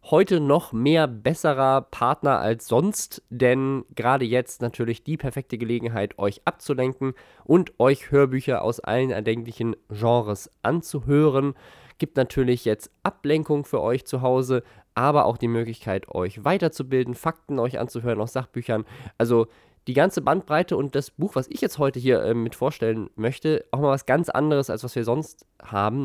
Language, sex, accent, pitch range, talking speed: German, male, German, 115-140 Hz, 160 wpm